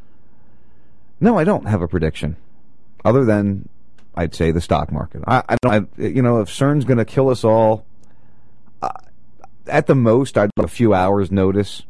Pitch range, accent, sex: 90-115 Hz, American, male